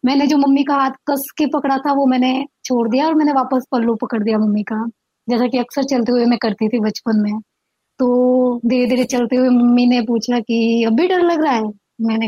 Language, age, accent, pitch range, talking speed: Hindi, 20-39, native, 230-285 Hz, 230 wpm